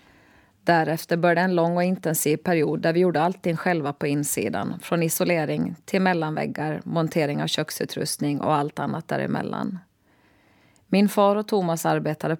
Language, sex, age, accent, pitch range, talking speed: Swedish, female, 30-49, native, 130-175 Hz, 145 wpm